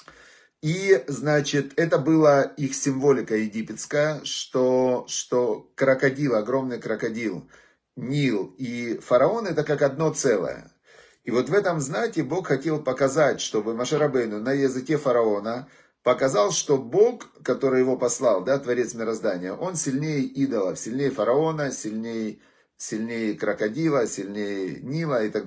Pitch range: 120-150 Hz